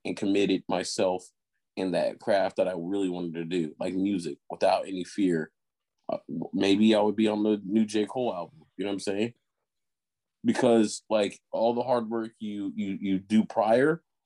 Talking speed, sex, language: 185 wpm, male, English